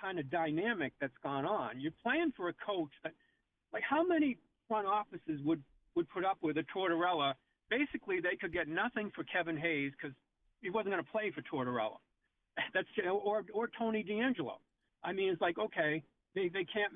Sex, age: male, 50-69